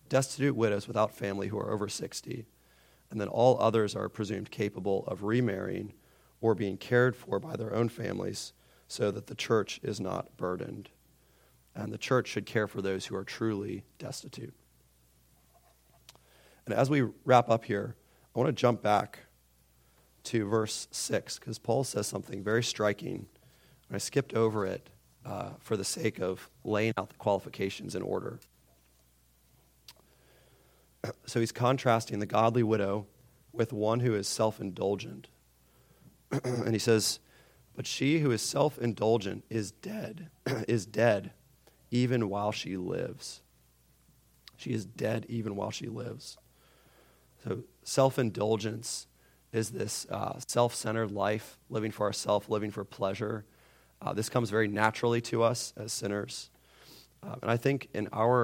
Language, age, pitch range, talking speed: English, 30-49, 100-120 Hz, 145 wpm